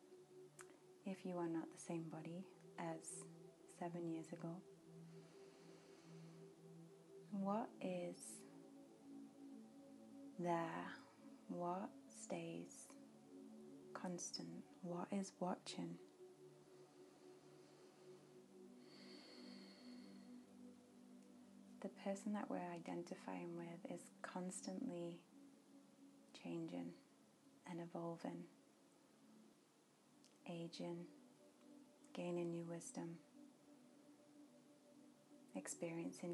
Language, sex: English, female